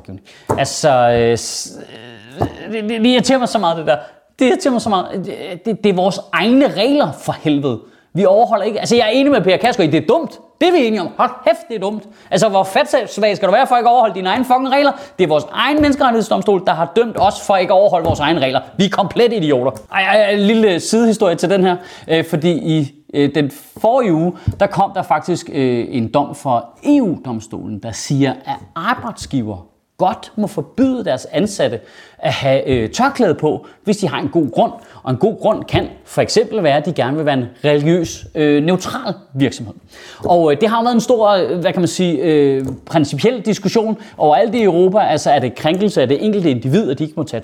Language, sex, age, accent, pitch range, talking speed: Danish, male, 30-49, native, 140-220 Hz, 220 wpm